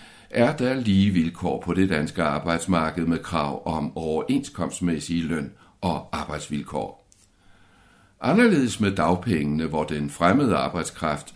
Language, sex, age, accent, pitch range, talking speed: Danish, male, 60-79, native, 80-100 Hz, 115 wpm